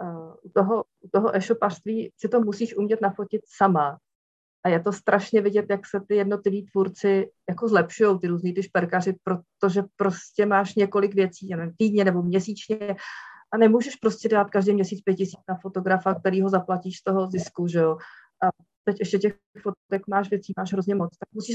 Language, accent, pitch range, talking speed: Czech, native, 190-215 Hz, 185 wpm